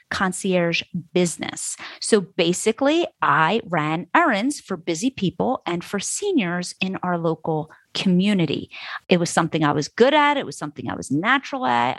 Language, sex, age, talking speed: English, female, 30-49, 155 wpm